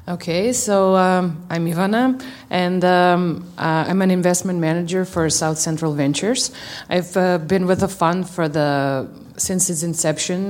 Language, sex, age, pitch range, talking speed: English, female, 30-49, 150-180 Hz, 155 wpm